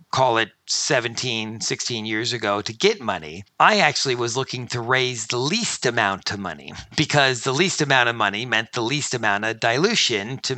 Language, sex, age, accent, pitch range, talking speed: English, male, 50-69, American, 115-140 Hz, 185 wpm